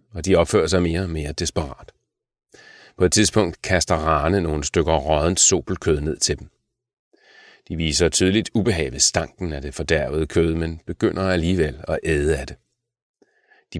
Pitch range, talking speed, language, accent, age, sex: 80-95 Hz, 160 wpm, Danish, native, 40-59, male